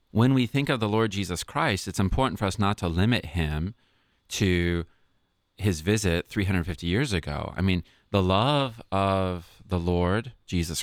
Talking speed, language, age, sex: 165 wpm, English, 30-49, male